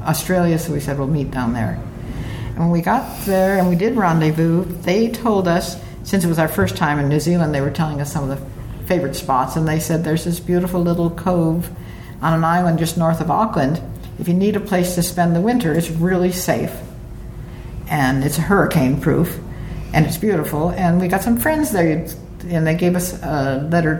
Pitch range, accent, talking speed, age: 145-180 Hz, American, 210 wpm, 60-79